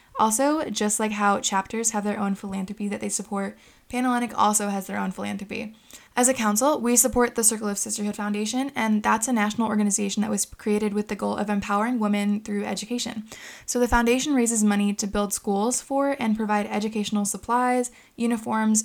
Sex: female